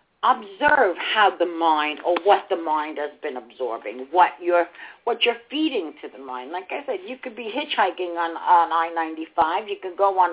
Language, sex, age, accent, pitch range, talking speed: English, female, 50-69, American, 165-245 Hz, 190 wpm